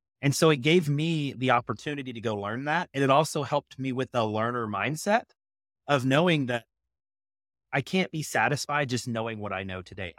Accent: American